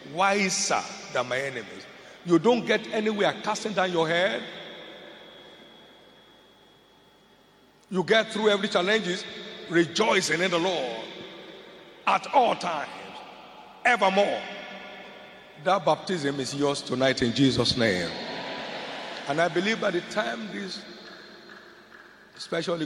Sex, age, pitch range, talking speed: male, 50-69, 145-205 Hz, 110 wpm